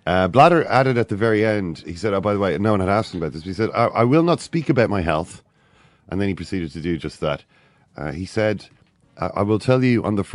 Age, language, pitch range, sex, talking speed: 40-59, English, 75-105 Hz, male, 280 wpm